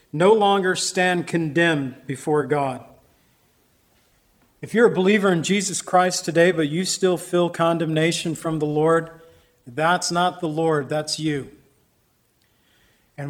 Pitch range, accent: 155-185 Hz, American